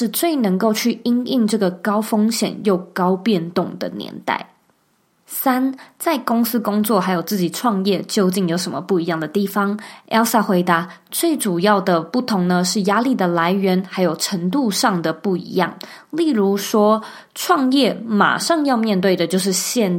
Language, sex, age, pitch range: Chinese, female, 20-39, 185-235 Hz